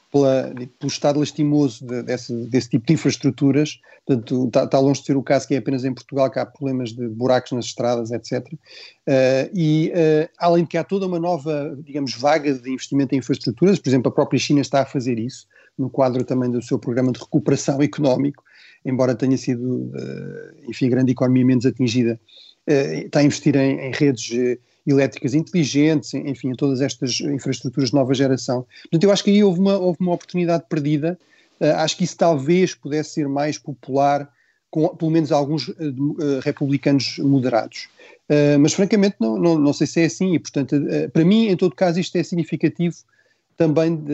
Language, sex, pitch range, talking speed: Portuguese, male, 130-160 Hz, 185 wpm